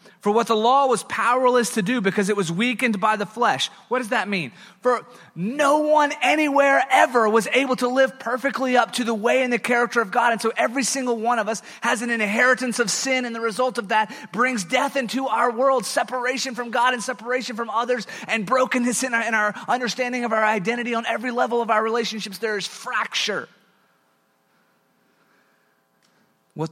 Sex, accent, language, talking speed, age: male, American, English, 195 wpm, 30-49